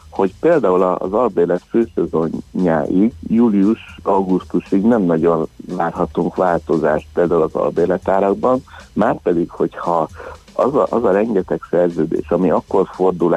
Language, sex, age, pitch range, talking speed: Hungarian, male, 60-79, 85-100 Hz, 110 wpm